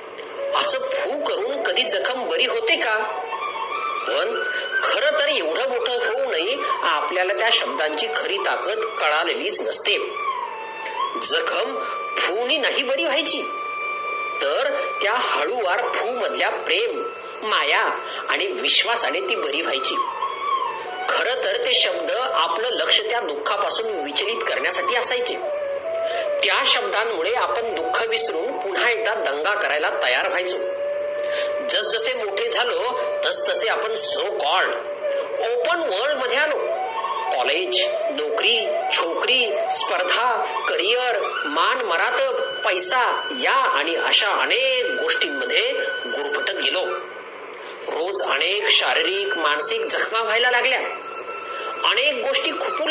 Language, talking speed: Marathi, 40 wpm